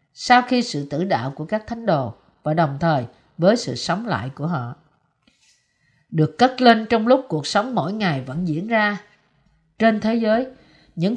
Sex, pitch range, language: female, 165-240 Hz, Vietnamese